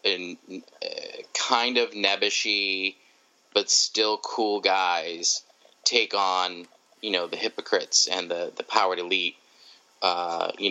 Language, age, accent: English, 20-39, American